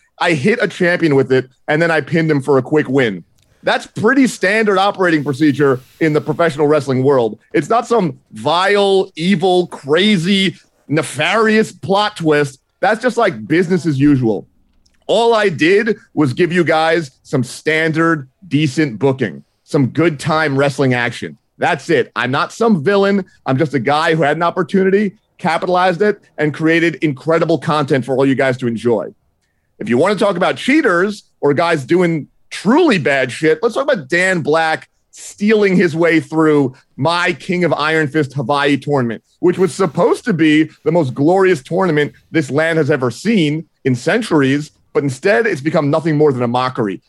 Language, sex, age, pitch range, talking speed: English, male, 30-49, 140-185 Hz, 175 wpm